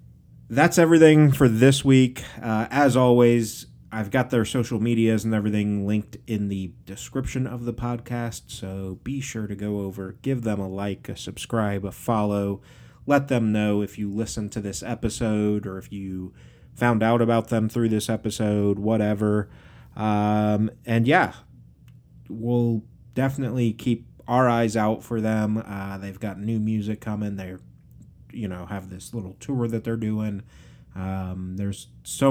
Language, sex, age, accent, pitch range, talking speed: English, male, 30-49, American, 100-120 Hz, 160 wpm